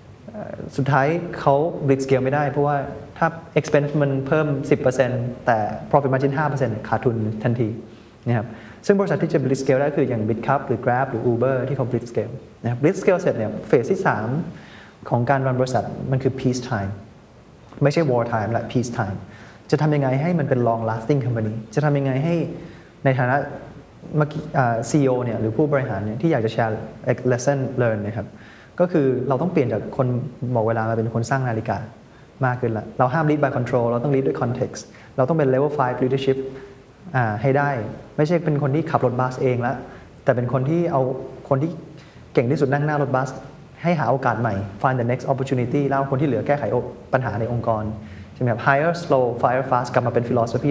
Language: Thai